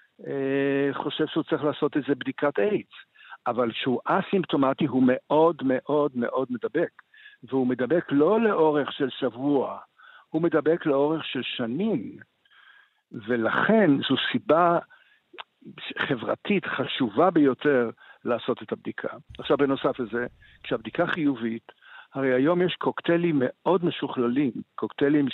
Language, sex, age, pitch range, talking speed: Hebrew, male, 60-79, 130-160 Hz, 110 wpm